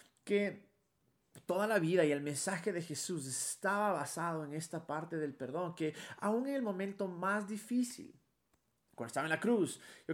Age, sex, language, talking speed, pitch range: 30-49, male, Spanish, 170 wpm, 145-200 Hz